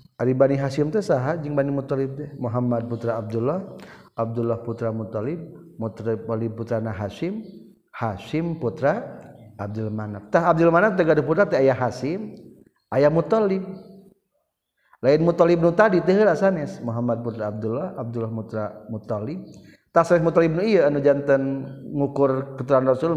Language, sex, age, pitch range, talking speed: Indonesian, male, 50-69, 115-150 Hz, 180 wpm